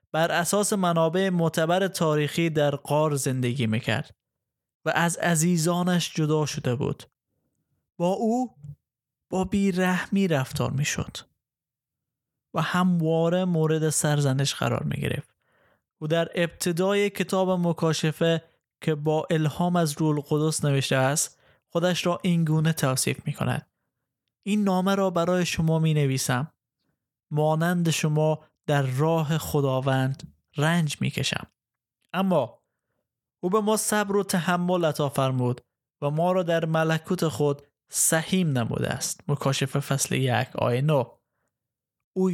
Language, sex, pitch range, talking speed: Persian, male, 140-175 Hz, 115 wpm